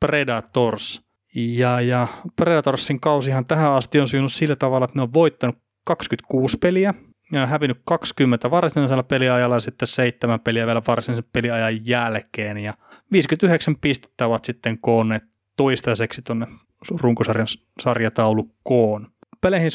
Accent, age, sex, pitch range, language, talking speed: native, 30-49, male, 115-140 Hz, Finnish, 125 wpm